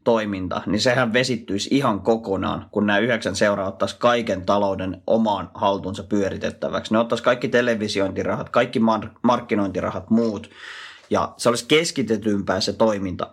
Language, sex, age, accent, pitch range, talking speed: Finnish, male, 30-49, native, 100-120 Hz, 125 wpm